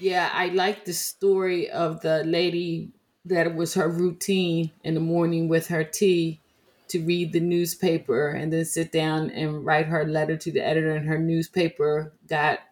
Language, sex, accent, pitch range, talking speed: English, female, American, 155-175 Hz, 180 wpm